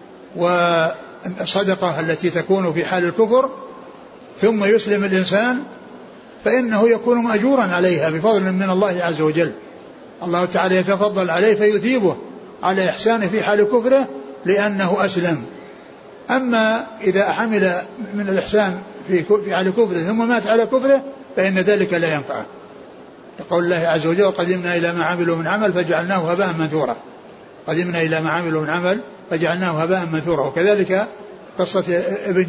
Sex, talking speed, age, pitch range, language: male, 130 wpm, 60-79, 170-210 Hz, Arabic